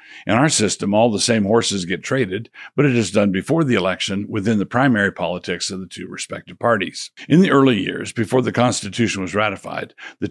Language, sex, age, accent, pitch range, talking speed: English, male, 60-79, American, 95-115 Hz, 205 wpm